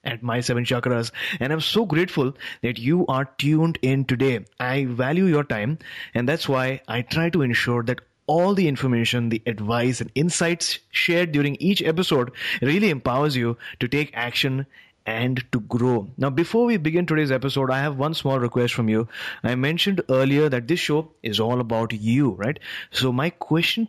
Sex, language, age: male, English, 30-49